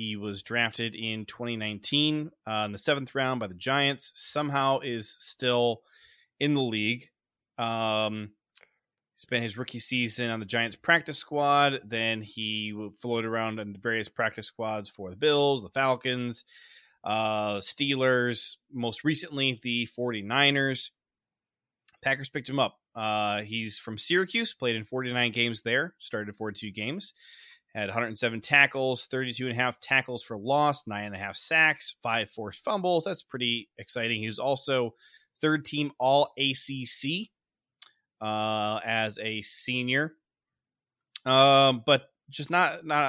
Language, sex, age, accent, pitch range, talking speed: English, male, 20-39, American, 110-140 Hz, 140 wpm